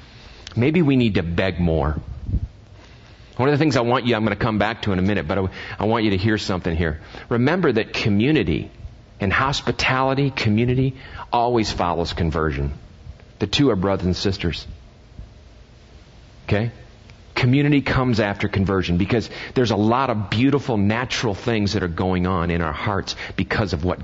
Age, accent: 40-59, American